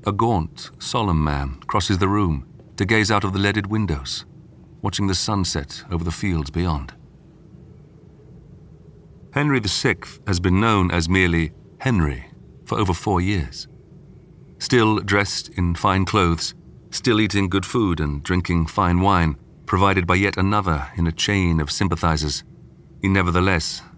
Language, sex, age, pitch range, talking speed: English, male, 40-59, 85-100 Hz, 145 wpm